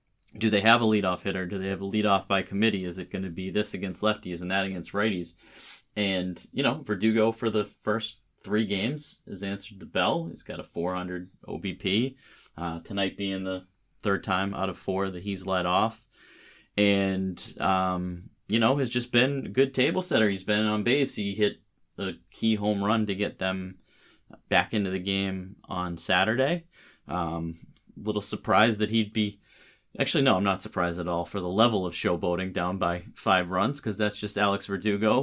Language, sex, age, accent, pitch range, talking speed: English, male, 30-49, American, 95-110 Hz, 190 wpm